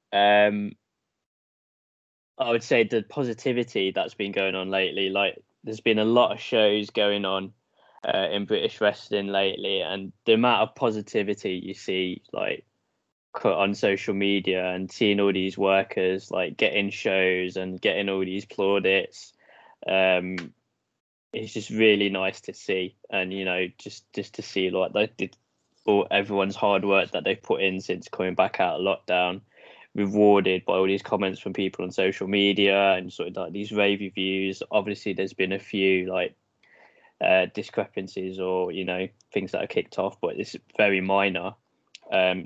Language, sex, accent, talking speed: English, male, British, 170 wpm